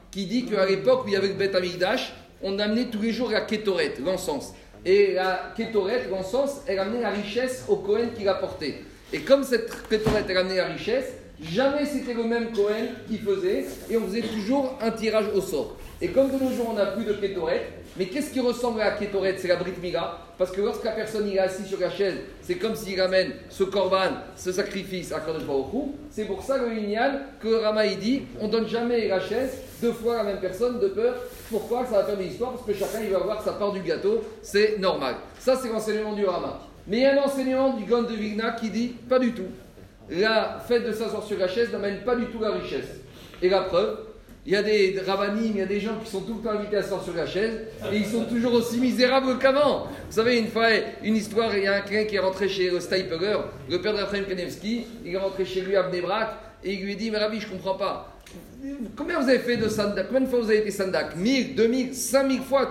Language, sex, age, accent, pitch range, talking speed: French, male, 40-59, French, 195-240 Hz, 240 wpm